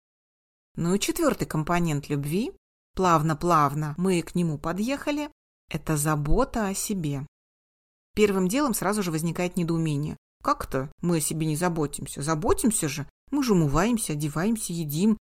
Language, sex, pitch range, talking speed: Russian, female, 160-195 Hz, 130 wpm